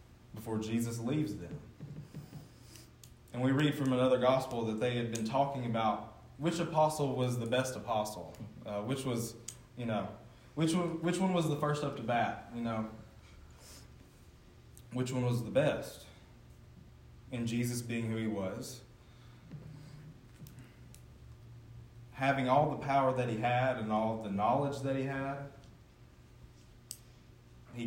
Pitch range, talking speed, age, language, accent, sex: 110-130 Hz, 140 wpm, 20-39, English, American, male